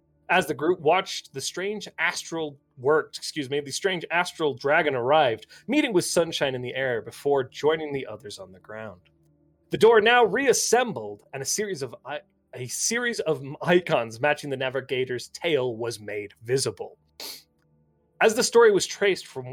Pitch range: 125-175 Hz